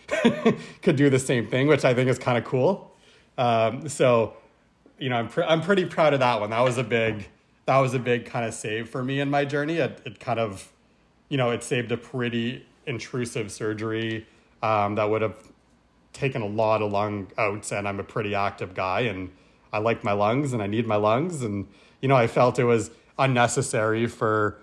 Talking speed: 210 wpm